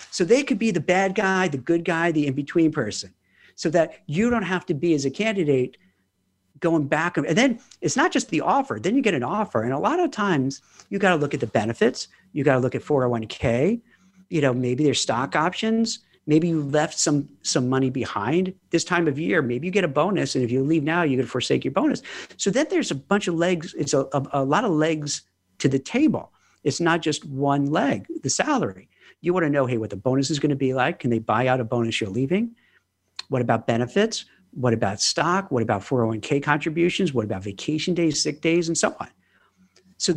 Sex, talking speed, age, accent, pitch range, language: male, 225 wpm, 50-69, American, 130-185 Hz, English